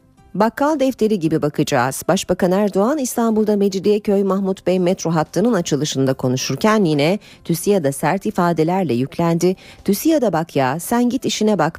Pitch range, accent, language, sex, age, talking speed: 150-200 Hz, native, Turkish, female, 40-59, 130 wpm